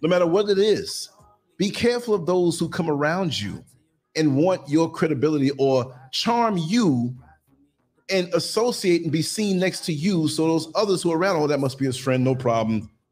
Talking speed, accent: 190 wpm, American